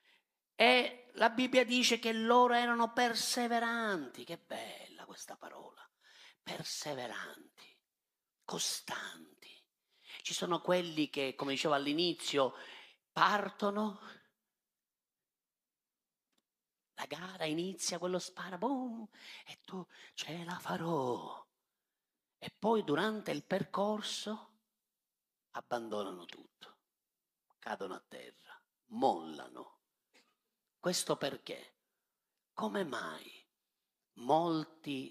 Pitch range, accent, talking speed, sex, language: 160-235 Hz, native, 85 wpm, male, Italian